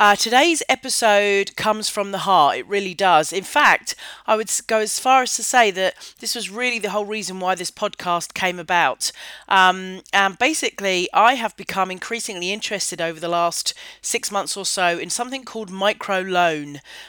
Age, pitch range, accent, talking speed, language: 40-59, 180-225 Hz, British, 180 wpm, English